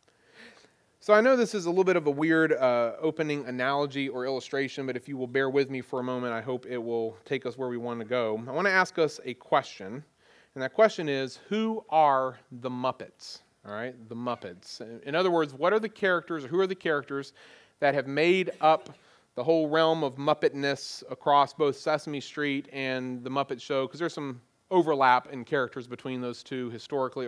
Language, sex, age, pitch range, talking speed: English, male, 30-49, 130-160 Hz, 210 wpm